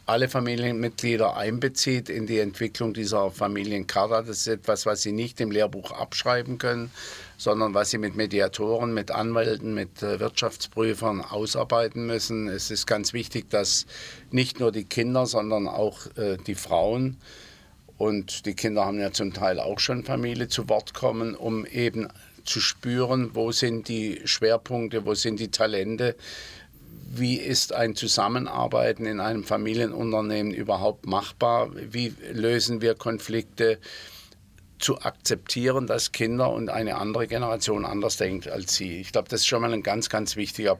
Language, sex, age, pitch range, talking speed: German, male, 50-69, 105-120 Hz, 150 wpm